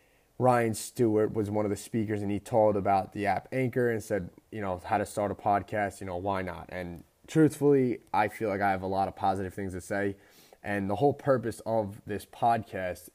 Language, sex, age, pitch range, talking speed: English, male, 20-39, 95-110 Hz, 220 wpm